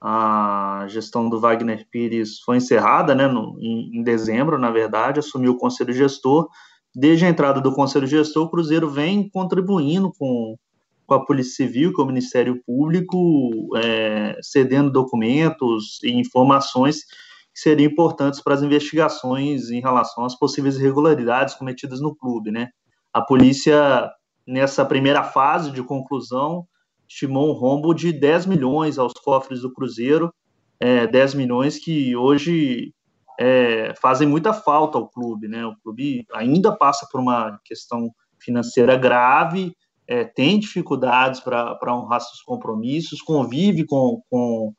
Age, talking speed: 20-39, 135 wpm